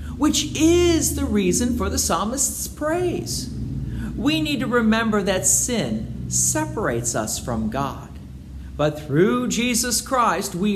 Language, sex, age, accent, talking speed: English, male, 40-59, American, 130 wpm